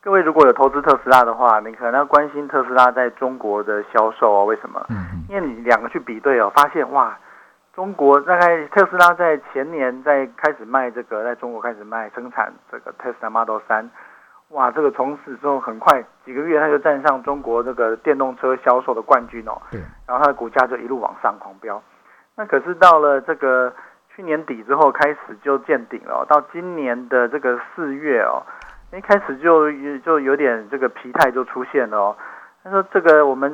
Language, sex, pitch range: Chinese, male, 120-150 Hz